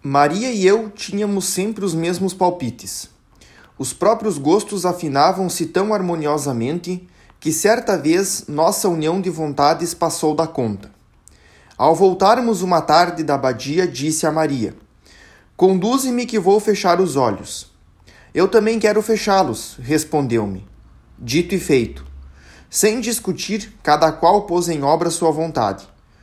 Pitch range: 150-200 Hz